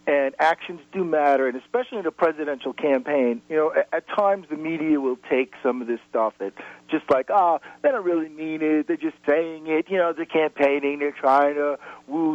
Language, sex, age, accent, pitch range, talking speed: English, male, 40-59, American, 125-165 Hz, 215 wpm